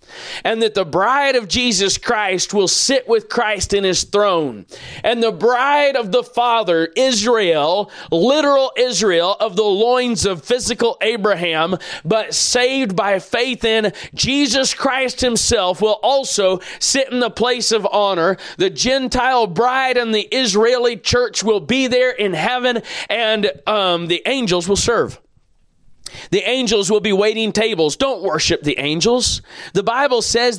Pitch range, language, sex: 205-250 Hz, English, male